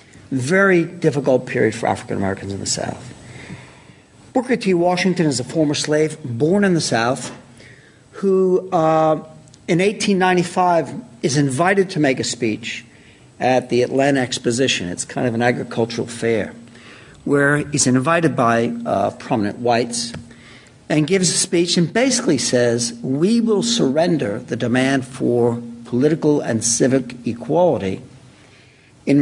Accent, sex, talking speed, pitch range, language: American, male, 130 wpm, 120-155 Hz, English